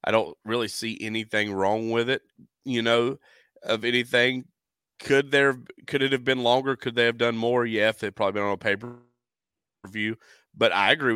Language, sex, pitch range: English, male, 100-115 Hz